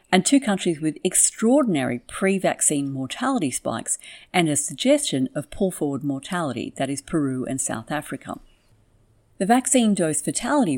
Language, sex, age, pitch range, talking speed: English, female, 50-69, 140-195 Hz, 135 wpm